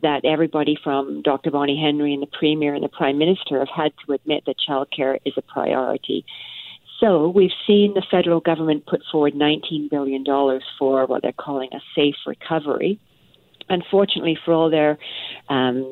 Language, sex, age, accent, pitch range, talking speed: English, female, 50-69, American, 140-165 Hz, 175 wpm